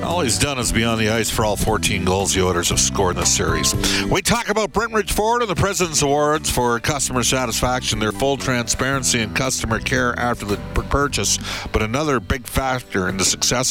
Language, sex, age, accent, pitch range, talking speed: English, male, 50-69, American, 105-140 Hz, 205 wpm